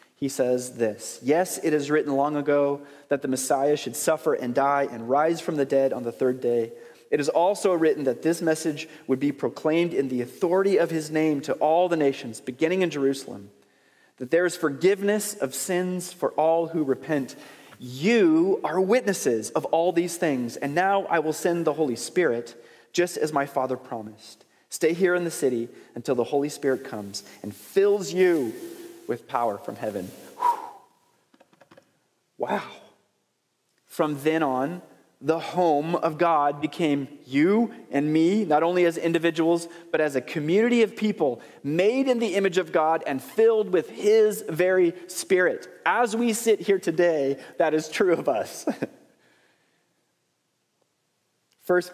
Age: 30-49